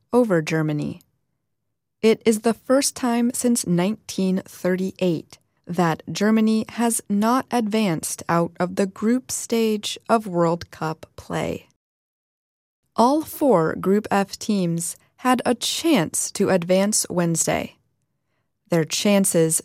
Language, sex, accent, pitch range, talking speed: English, female, American, 165-215 Hz, 110 wpm